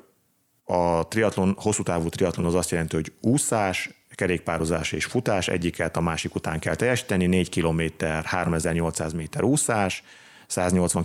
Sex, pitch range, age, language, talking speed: male, 85-100 Hz, 30-49, Hungarian, 125 wpm